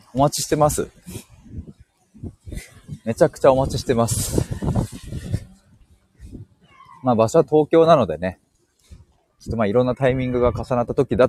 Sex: male